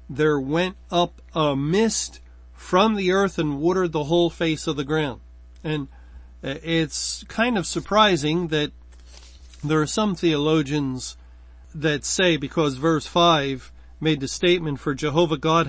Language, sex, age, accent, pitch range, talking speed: English, male, 40-59, American, 140-175 Hz, 140 wpm